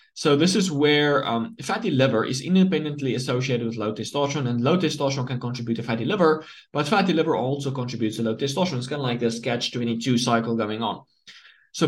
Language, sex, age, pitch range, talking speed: English, male, 20-39, 115-150 Hz, 195 wpm